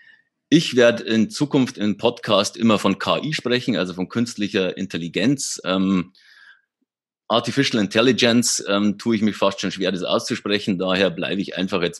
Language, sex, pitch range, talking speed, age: German, male, 100-135 Hz, 155 wpm, 30-49